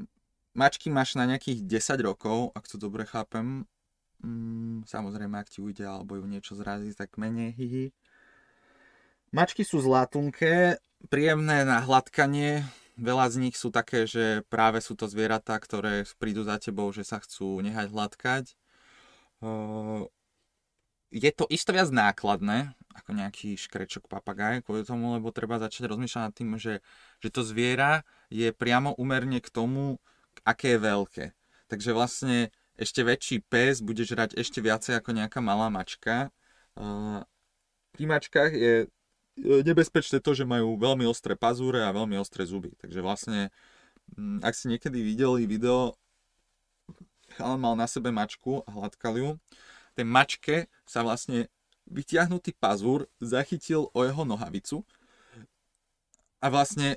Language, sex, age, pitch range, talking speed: Slovak, male, 20-39, 110-135 Hz, 135 wpm